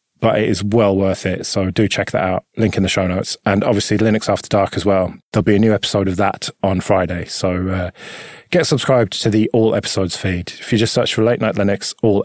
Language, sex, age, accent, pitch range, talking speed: English, male, 20-39, British, 100-130 Hz, 245 wpm